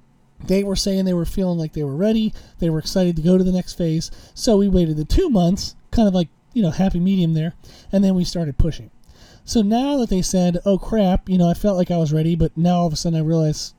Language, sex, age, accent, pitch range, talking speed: English, male, 30-49, American, 165-210 Hz, 265 wpm